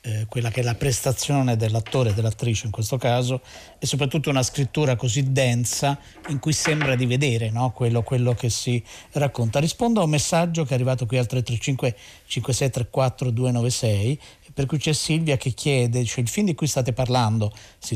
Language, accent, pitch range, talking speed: Italian, native, 120-145 Hz, 175 wpm